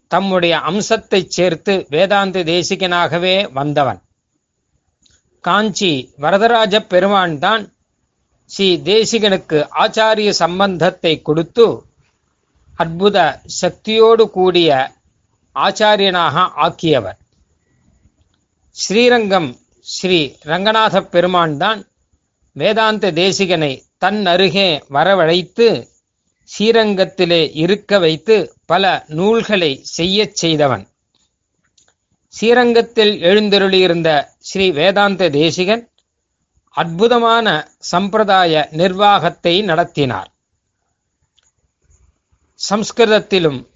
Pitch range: 155-210 Hz